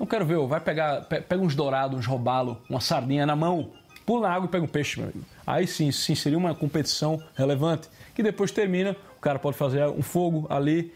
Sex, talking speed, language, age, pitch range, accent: male, 220 wpm, Portuguese, 20-39, 135-170 Hz, Brazilian